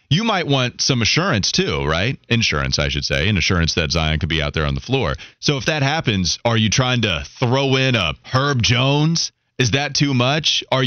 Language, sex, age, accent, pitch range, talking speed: English, male, 30-49, American, 95-130 Hz, 220 wpm